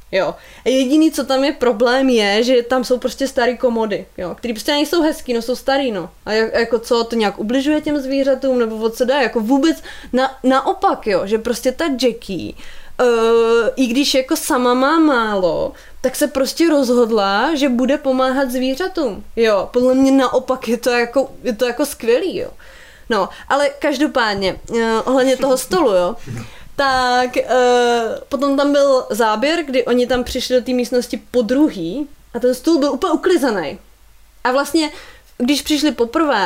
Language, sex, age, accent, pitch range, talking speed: Czech, female, 20-39, native, 230-280 Hz, 175 wpm